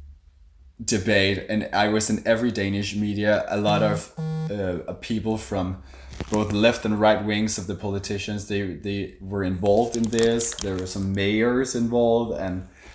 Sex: male